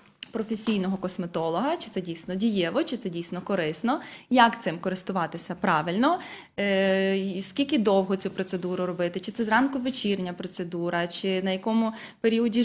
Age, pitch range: 20-39, 190-265 Hz